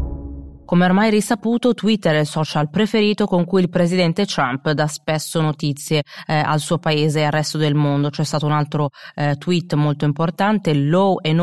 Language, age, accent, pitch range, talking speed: Italian, 20-39, native, 145-165 Hz, 185 wpm